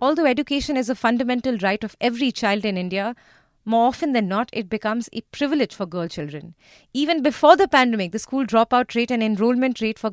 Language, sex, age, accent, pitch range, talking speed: English, female, 30-49, Indian, 205-260 Hz, 200 wpm